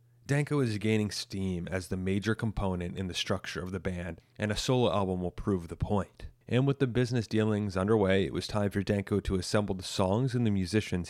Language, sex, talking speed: English, male, 215 wpm